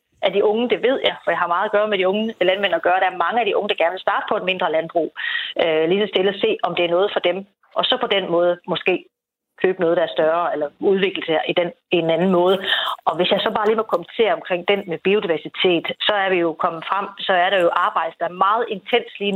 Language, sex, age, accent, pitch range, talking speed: Danish, female, 30-49, native, 170-215 Hz, 285 wpm